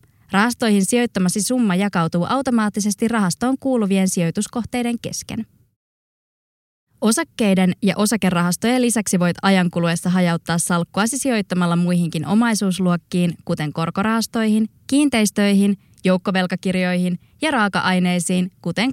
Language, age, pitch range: Finnish, 20-39, 175-225 Hz